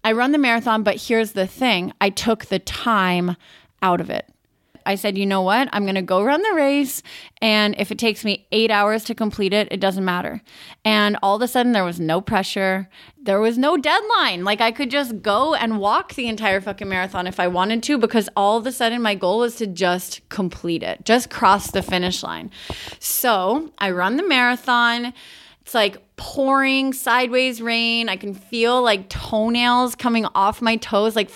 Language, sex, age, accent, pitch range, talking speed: English, female, 30-49, American, 190-235 Hz, 200 wpm